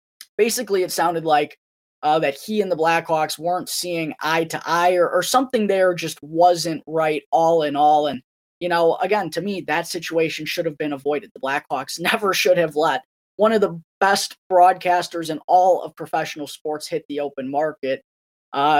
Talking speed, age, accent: 185 wpm, 20-39, American